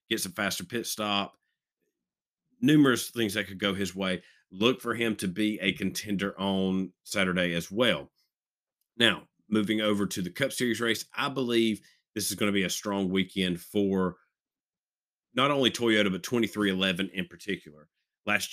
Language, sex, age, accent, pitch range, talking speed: English, male, 40-59, American, 95-110 Hz, 160 wpm